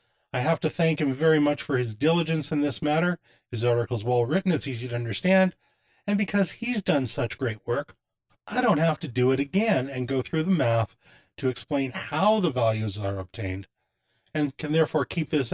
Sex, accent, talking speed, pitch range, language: male, American, 200 wpm, 105-160 Hz, English